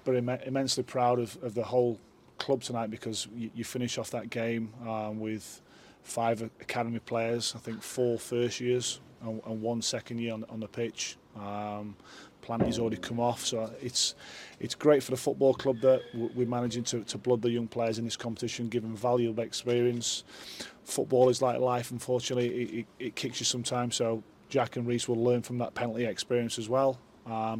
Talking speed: 195 wpm